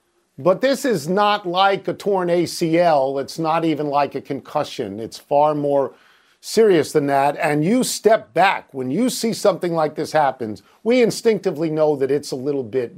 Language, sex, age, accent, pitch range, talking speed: English, male, 50-69, American, 155-210 Hz, 180 wpm